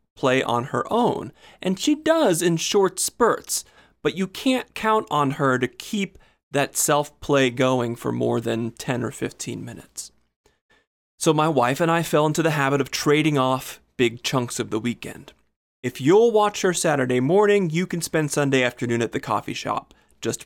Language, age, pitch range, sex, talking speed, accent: English, 30-49, 120-165 Hz, male, 180 wpm, American